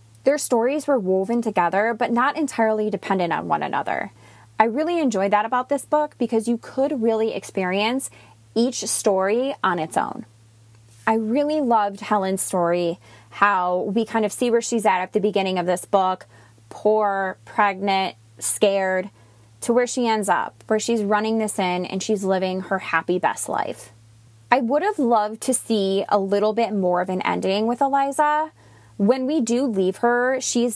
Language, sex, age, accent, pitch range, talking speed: English, female, 20-39, American, 185-245 Hz, 175 wpm